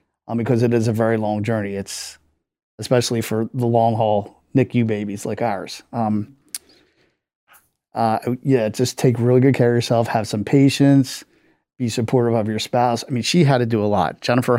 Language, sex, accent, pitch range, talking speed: English, male, American, 110-130 Hz, 180 wpm